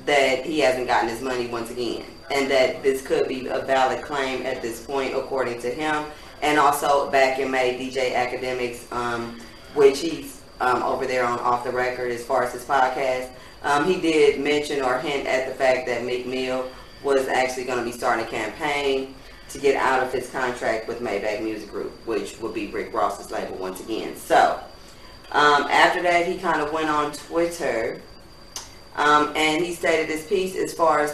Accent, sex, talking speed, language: American, female, 195 wpm, English